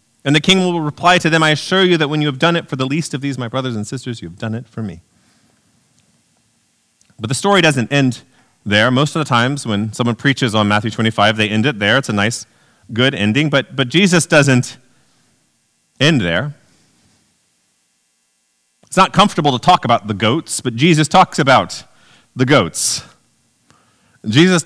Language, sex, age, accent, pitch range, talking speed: English, male, 30-49, American, 115-170 Hz, 185 wpm